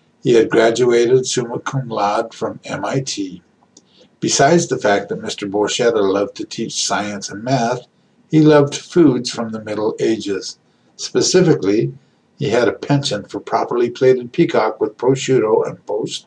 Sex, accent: male, American